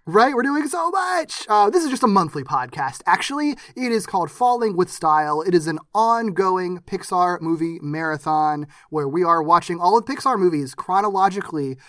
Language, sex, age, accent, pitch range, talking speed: English, male, 20-39, American, 150-225 Hz, 175 wpm